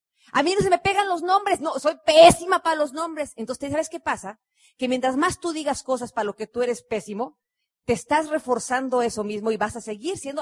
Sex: female